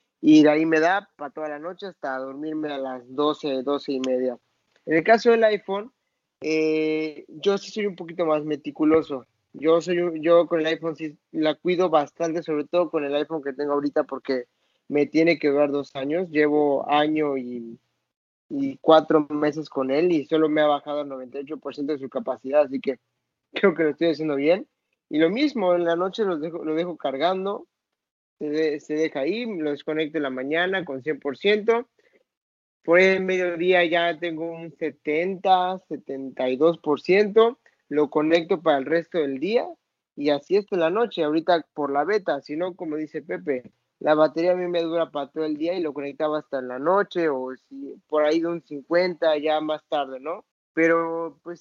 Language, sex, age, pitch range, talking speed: Spanish, male, 20-39, 145-175 Hz, 190 wpm